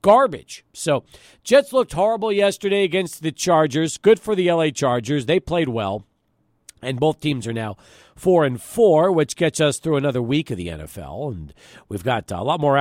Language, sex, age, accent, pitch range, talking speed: English, male, 40-59, American, 135-205 Hz, 185 wpm